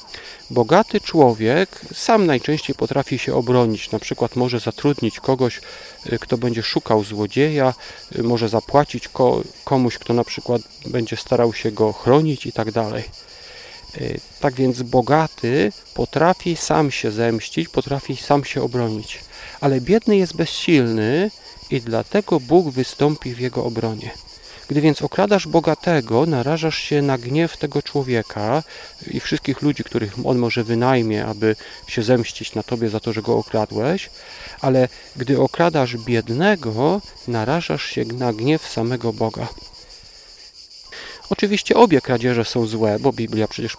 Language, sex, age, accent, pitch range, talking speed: Polish, male, 40-59, native, 115-150 Hz, 130 wpm